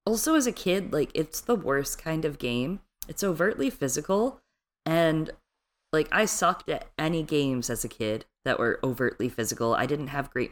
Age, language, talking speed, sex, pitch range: 20-39, English, 185 wpm, female, 130-185 Hz